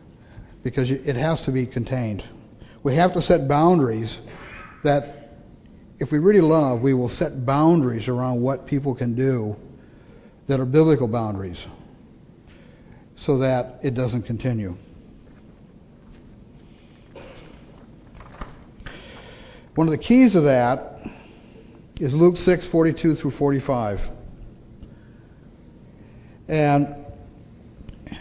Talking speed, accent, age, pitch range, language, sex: 100 wpm, American, 60-79, 120-160 Hz, English, male